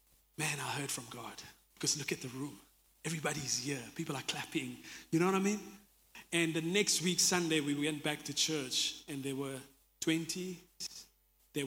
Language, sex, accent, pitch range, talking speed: English, male, South African, 150-185 Hz, 180 wpm